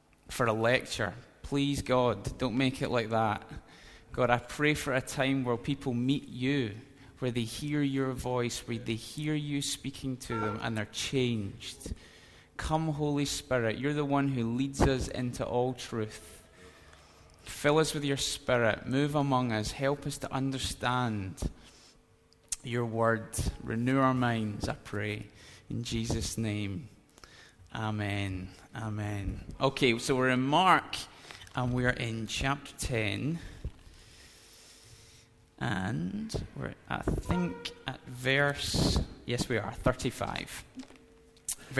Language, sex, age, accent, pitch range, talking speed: English, male, 20-39, British, 110-140 Hz, 130 wpm